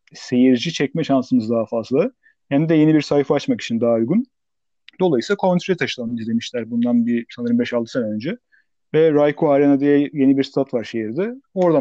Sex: male